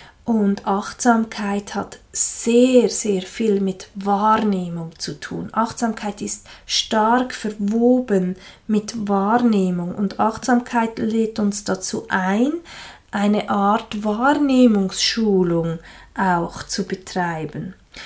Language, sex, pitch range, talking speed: German, female, 195-245 Hz, 95 wpm